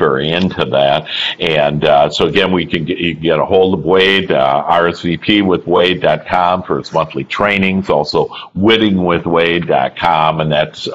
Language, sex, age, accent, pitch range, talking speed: English, male, 50-69, American, 75-90 Hz, 165 wpm